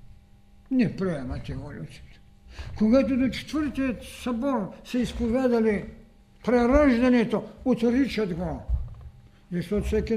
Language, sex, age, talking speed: Bulgarian, male, 60-79, 85 wpm